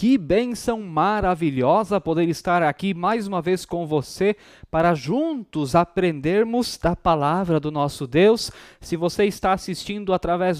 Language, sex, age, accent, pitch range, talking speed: Portuguese, male, 20-39, Brazilian, 155-215 Hz, 135 wpm